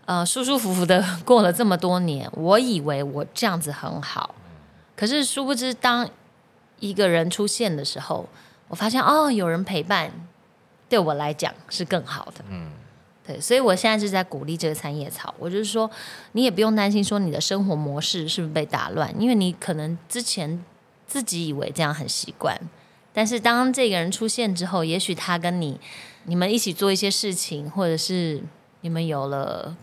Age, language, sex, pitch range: 20-39, Chinese, female, 160-210 Hz